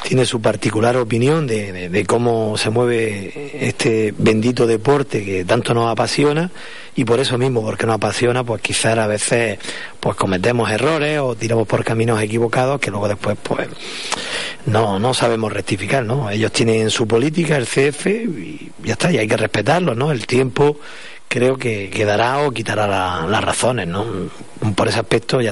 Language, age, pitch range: Spanish, 40-59, 110-130 Hz